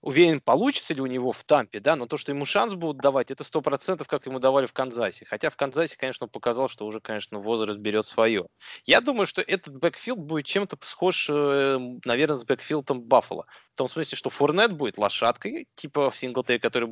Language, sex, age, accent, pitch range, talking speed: Russian, male, 20-39, native, 120-155 Hz, 200 wpm